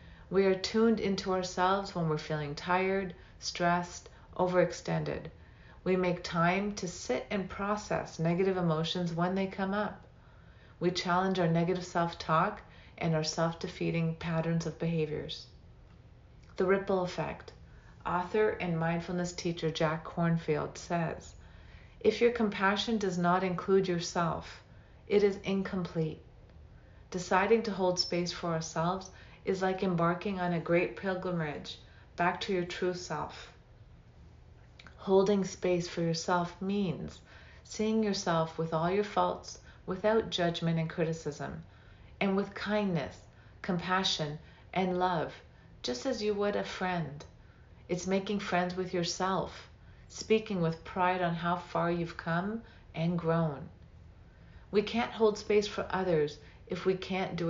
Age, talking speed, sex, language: 40-59, 130 wpm, female, English